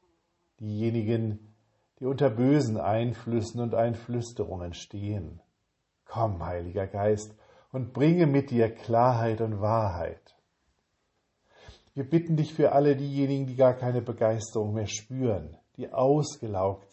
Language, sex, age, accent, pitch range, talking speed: German, male, 50-69, German, 105-130 Hz, 115 wpm